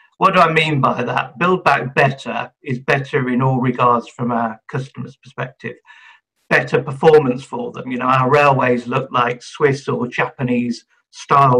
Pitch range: 125-145 Hz